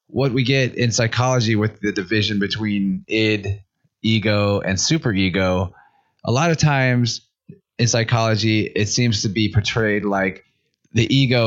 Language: English